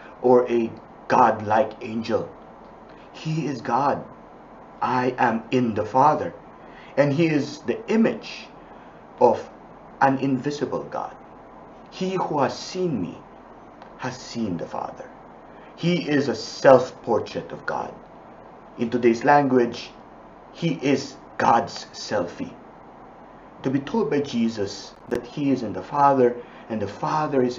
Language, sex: English, male